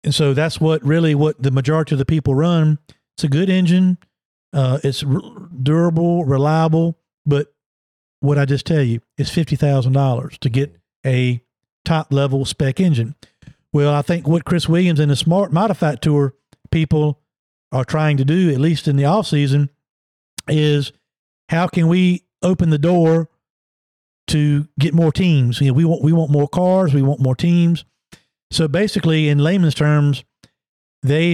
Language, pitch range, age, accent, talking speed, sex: English, 140-165 Hz, 50-69, American, 165 wpm, male